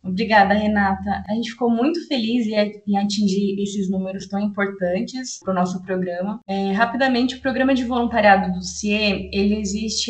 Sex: female